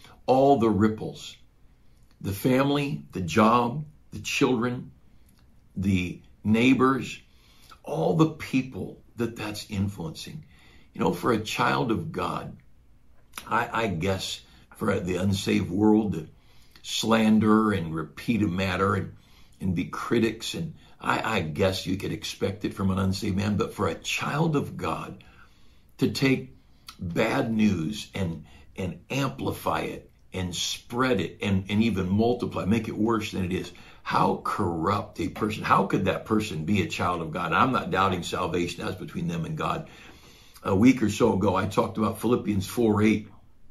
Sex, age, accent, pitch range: male, 60-79, American, 95-120 Hz